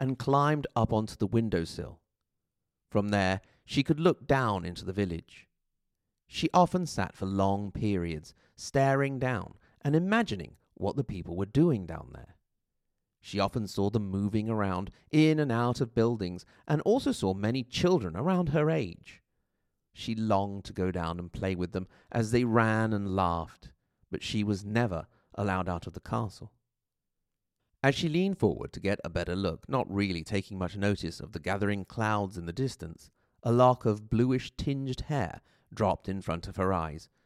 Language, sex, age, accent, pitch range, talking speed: English, male, 40-59, British, 95-135 Hz, 170 wpm